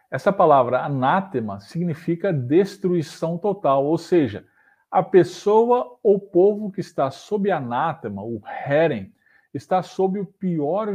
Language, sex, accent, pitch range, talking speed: Portuguese, male, Brazilian, 140-200 Hz, 120 wpm